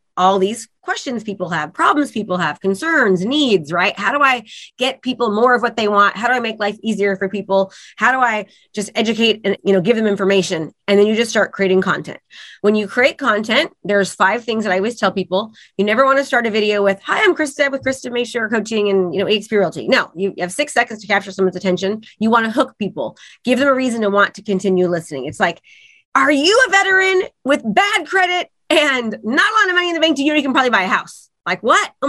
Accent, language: American, English